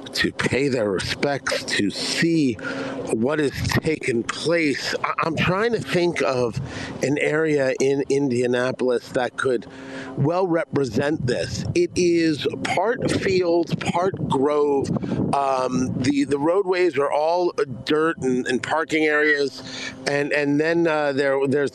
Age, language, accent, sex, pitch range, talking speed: 50-69, English, American, male, 135-175 Hz, 130 wpm